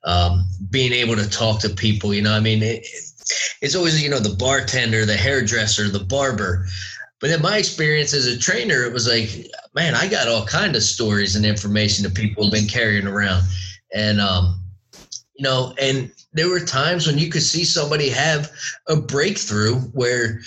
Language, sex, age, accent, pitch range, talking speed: English, male, 20-39, American, 105-135 Hz, 185 wpm